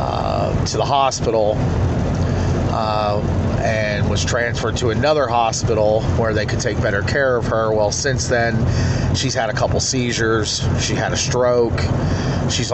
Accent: American